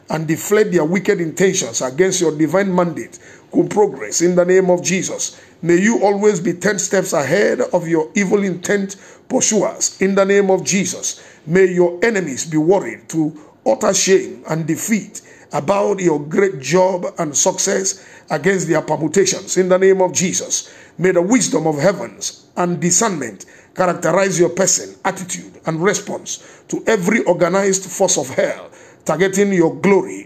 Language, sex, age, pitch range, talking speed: English, male, 50-69, 165-195 Hz, 155 wpm